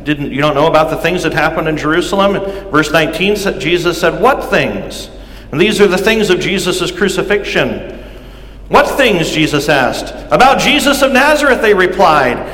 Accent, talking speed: American, 165 wpm